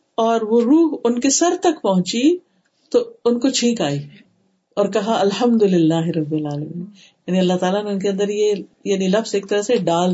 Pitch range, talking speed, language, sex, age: 180-215 Hz, 185 wpm, Urdu, female, 50-69